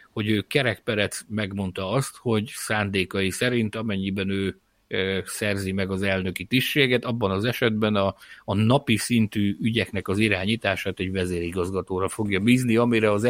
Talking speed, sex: 135 wpm, male